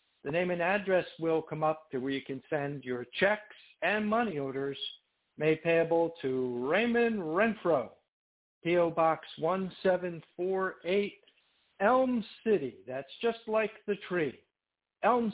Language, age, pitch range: English, 60-79, 165-210 Hz